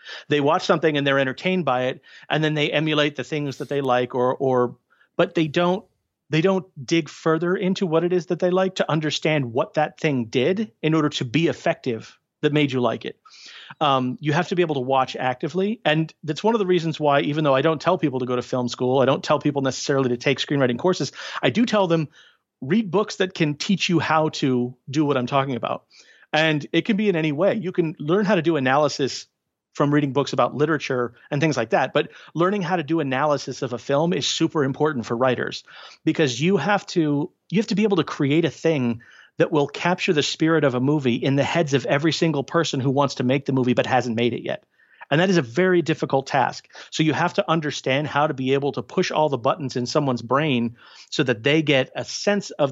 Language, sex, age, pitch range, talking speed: English, male, 40-59, 130-170 Hz, 240 wpm